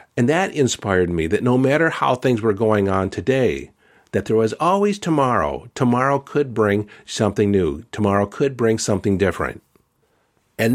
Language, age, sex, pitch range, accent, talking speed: English, 50-69, male, 100-125 Hz, American, 160 wpm